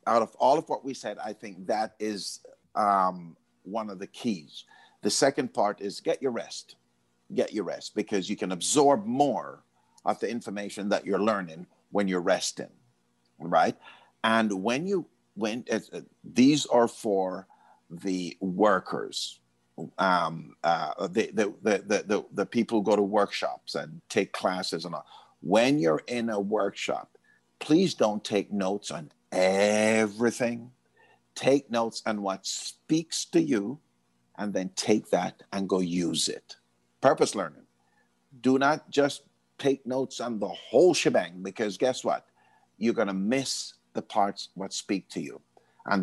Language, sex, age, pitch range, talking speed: English, male, 50-69, 85-120 Hz, 155 wpm